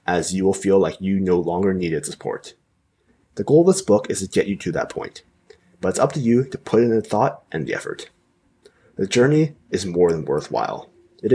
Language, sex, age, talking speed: English, male, 20-39, 220 wpm